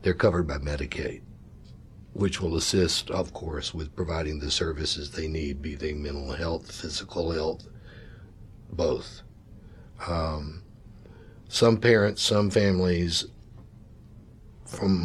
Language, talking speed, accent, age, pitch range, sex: English, 110 wpm, American, 60-79, 80-100 Hz, male